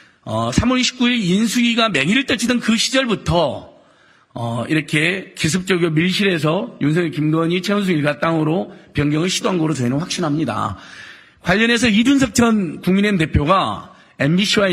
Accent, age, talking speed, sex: Korean, 40-59, 115 wpm, male